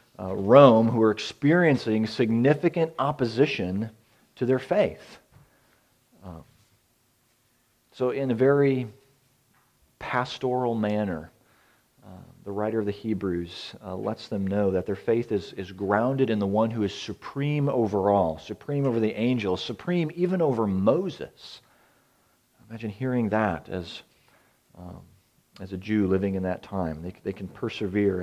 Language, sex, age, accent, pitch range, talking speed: English, male, 40-59, American, 95-135 Hz, 140 wpm